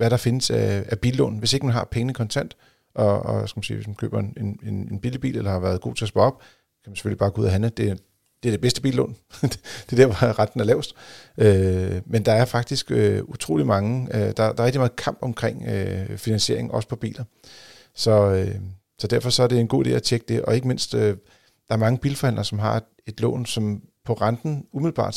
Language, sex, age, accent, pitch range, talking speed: Danish, male, 40-59, native, 105-125 Hz, 255 wpm